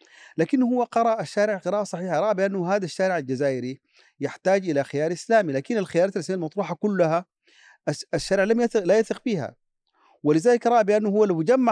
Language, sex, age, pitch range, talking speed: Arabic, male, 40-59, 145-200 Hz, 165 wpm